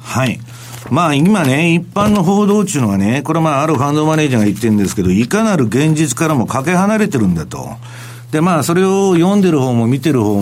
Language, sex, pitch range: Japanese, male, 120-185 Hz